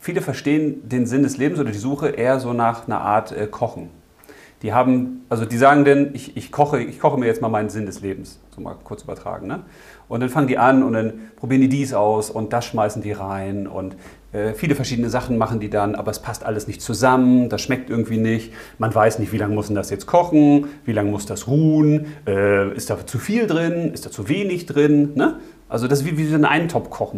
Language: German